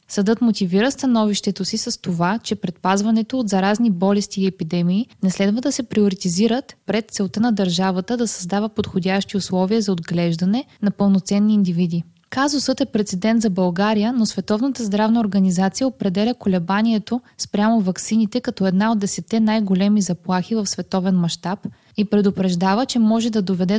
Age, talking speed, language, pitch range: 20-39, 150 wpm, Bulgarian, 190-225 Hz